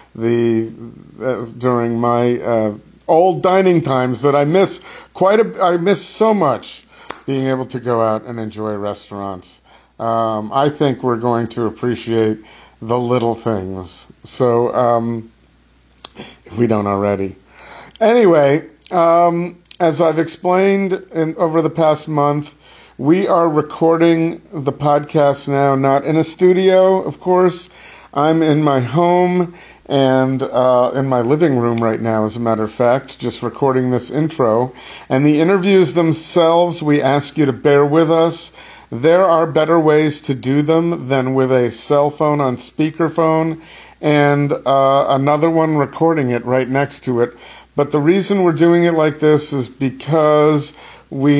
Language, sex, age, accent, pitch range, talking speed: English, male, 50-69, American, 120-160 Hz, 150 wpm